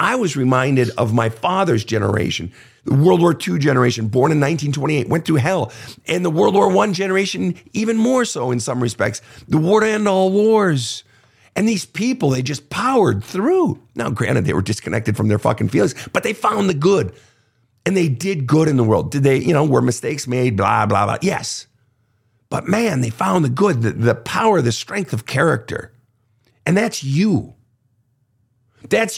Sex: male